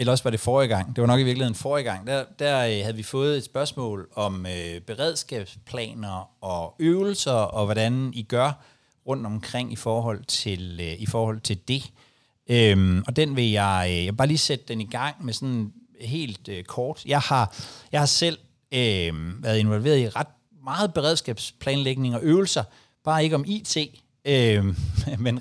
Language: Danish